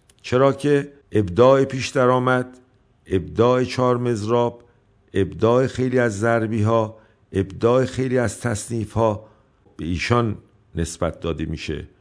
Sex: male